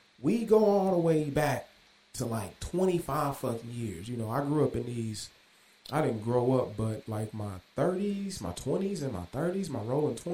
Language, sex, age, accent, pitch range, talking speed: English, male, 30-49, American, 120-170 Hz, 190 wpm